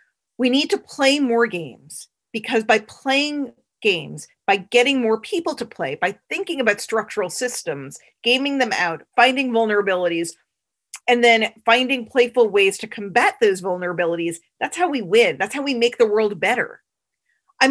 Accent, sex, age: American, female, 40-59